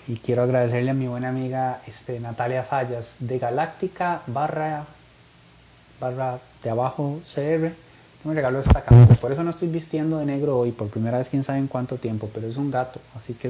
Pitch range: 120-145 Hz